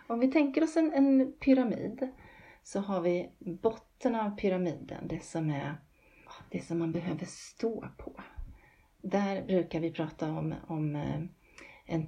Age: 30-49